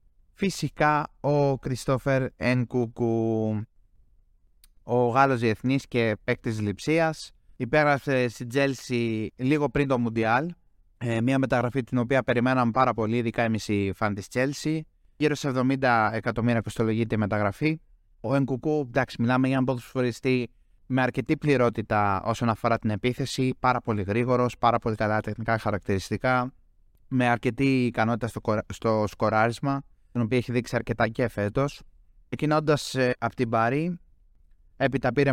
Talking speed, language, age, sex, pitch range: 130 wpm, Greek, 20-39, male, 110-130 Hz